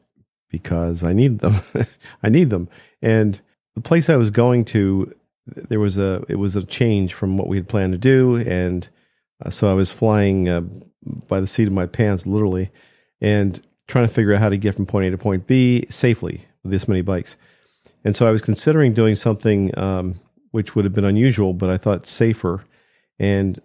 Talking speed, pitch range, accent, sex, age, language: 200 wpm, 95-115 Hz, American, male, 50-69, English